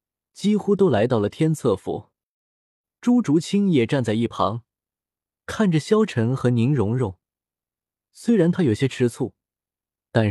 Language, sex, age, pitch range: Chinese, male, 20-39, 105-155 Hz